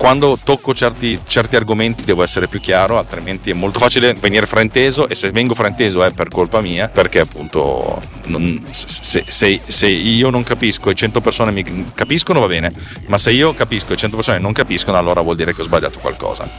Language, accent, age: Italian, native, 40-59